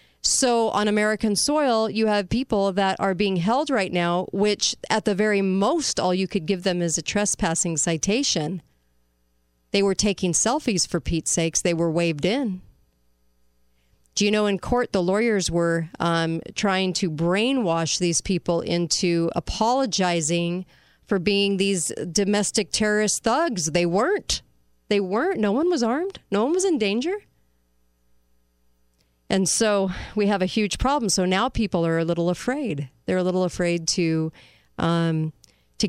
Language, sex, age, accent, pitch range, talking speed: English, female, 40-59, American, 165-210 Hz, 155 wpm